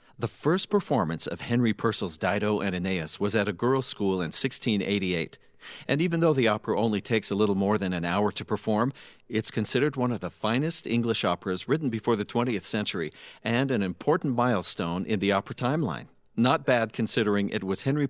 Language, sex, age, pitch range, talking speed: English, male, 50-69, 95-125 Hz, 190 wpm